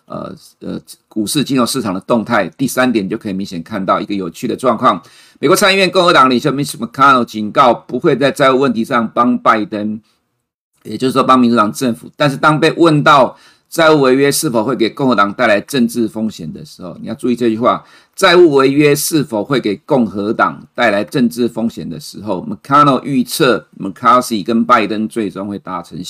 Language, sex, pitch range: Chinese, male, 110-130 Hz